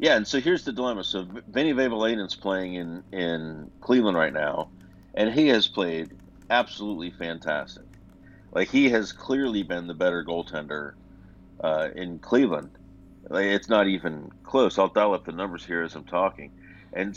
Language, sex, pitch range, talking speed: English, male, 85-95 Hz, 160 wpm